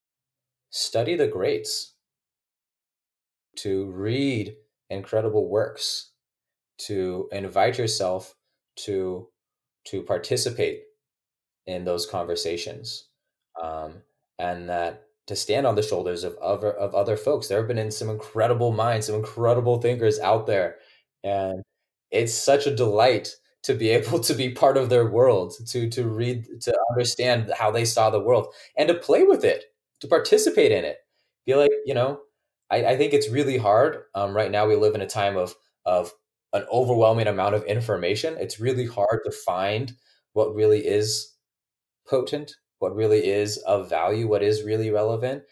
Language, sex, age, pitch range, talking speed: English, male, 20-39, 105-145 Hz, 155 wpm